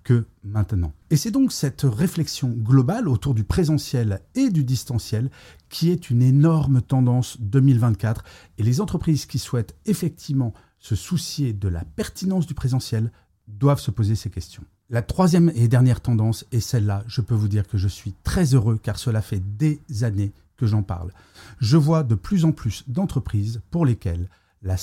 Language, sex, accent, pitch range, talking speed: French, male, French, 105-150 Hz, 175 wpm